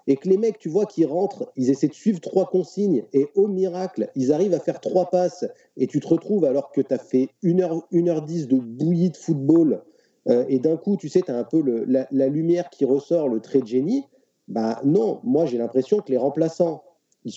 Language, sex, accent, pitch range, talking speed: French, male, French, 130-180 Hz, 245 wpm